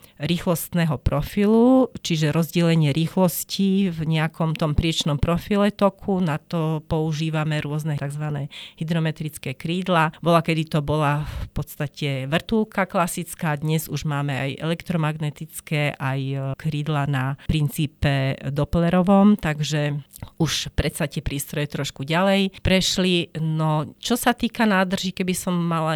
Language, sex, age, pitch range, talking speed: Slovak, female, 40-59, 145-170 Hz, 120 wpm